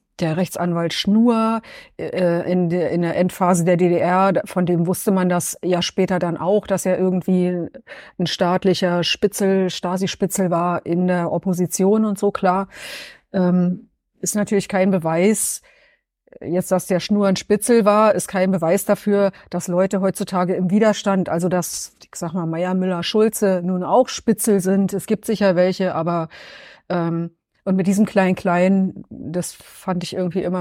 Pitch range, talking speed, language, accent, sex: 175-195 Hz, 155 wpm, German, German, female